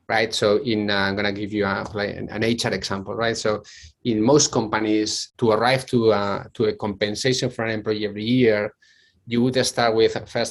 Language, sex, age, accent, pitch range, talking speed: English, male, 30-49, Spanish, 105-125 Hz, 200 wpm